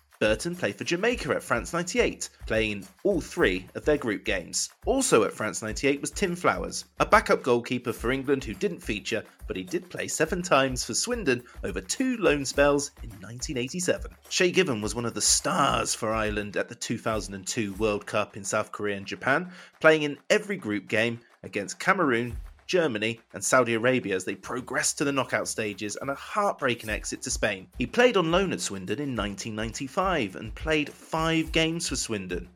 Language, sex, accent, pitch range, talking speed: English, male, British, 105-145 Hz, 185 wpm